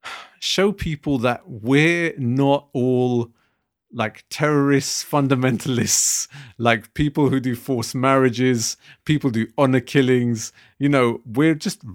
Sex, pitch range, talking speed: male, 120-140 Hz, 115 wpm